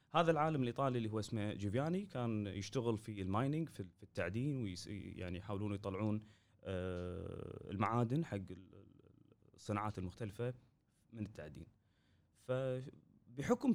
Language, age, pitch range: Arabic, 30-49, 100-145 Hz